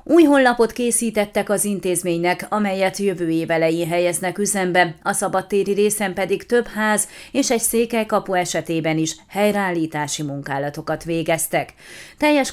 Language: Hungarian